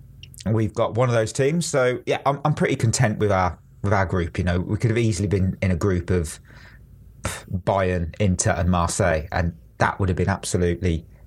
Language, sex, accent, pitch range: English, male, British, 95-120 Hz